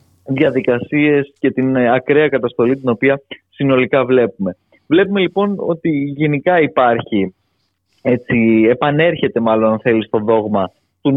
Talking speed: 115 wpm